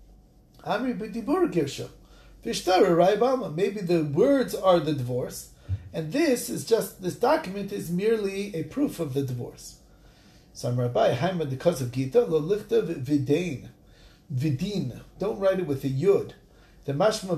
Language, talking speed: English, 135 wpm